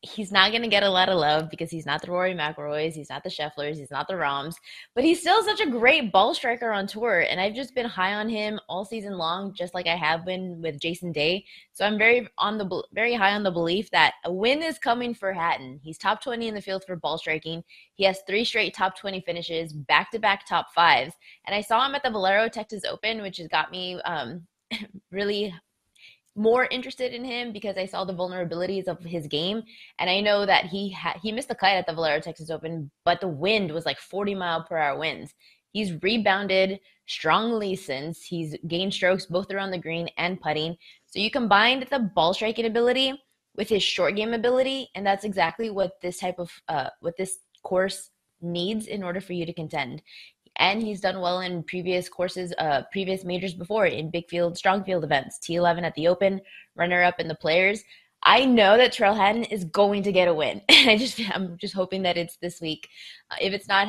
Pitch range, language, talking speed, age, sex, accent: 170-210 Hz, English, 220 wpm, 20-39, female, American